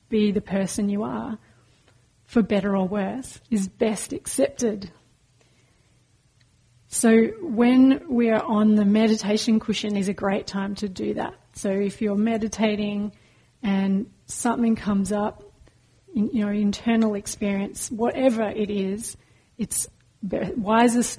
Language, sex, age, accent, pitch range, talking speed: English, female, 30-49, Australian, 195-230 Hz, 125 wpm